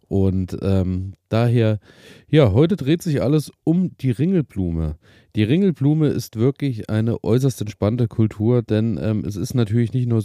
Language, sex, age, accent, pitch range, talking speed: German, male, 30-49, German, 105-125 Hz, 150 wpm